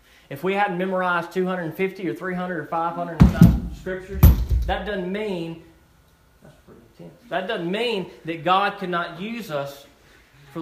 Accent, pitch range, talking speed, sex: American, 155-200 Hz, 165 wpm, male